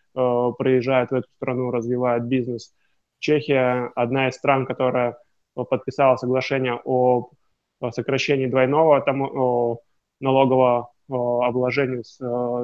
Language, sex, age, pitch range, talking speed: Russian, male, 20-39, 125-140 Hz, 90 wpm